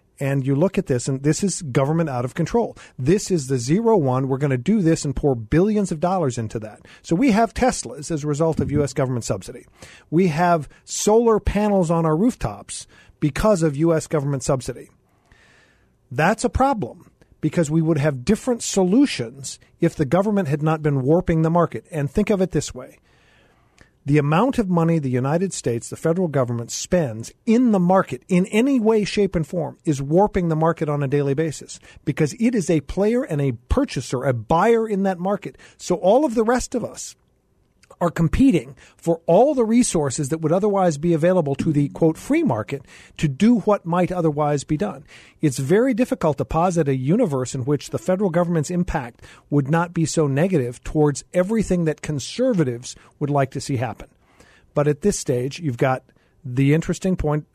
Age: 40-59